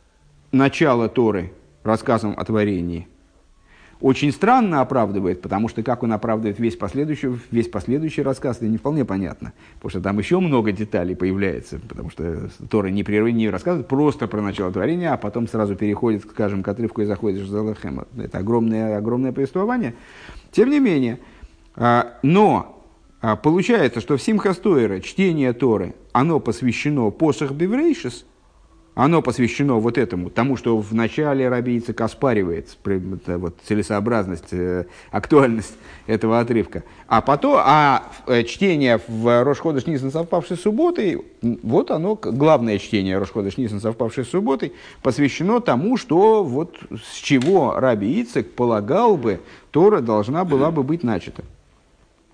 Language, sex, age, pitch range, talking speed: Russian, male, 50-69, 105-145 Hz, 130 wpm